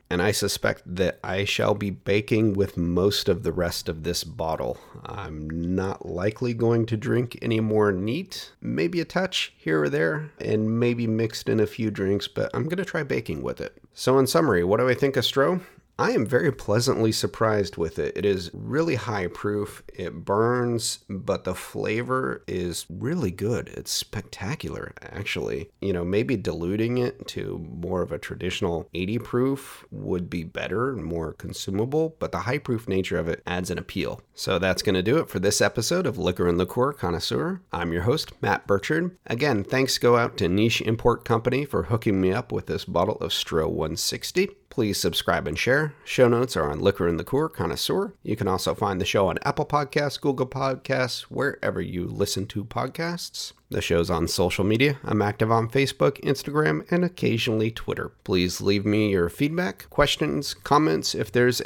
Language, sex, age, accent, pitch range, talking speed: English, male, 30-49, American, 95-130 Hz, 185 wpm